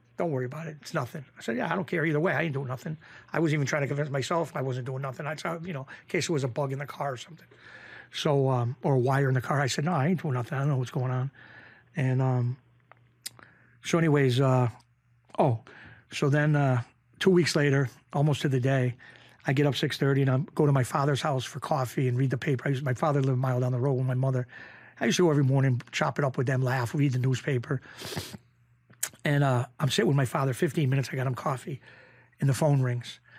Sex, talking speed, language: male, 260 wpm, English